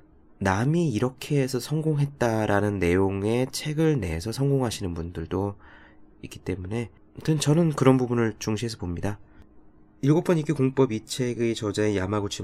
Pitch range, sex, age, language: 90-125 Hz, male, 20-39, Korean